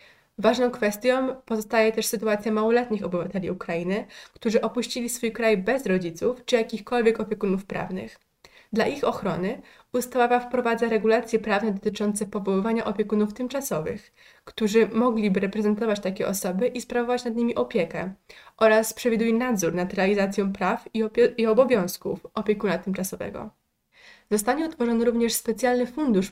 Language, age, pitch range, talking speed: Polish, 20-39, 205-240 Hz, 125 wpm